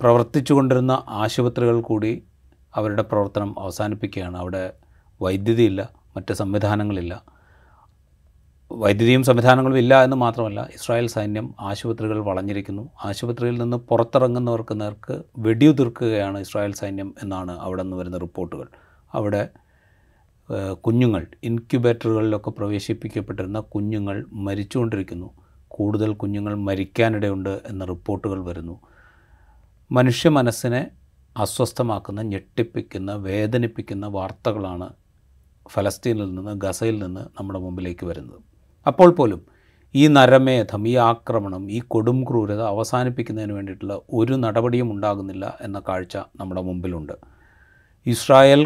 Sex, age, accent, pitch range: male, 30-49, native, 95-120 Hz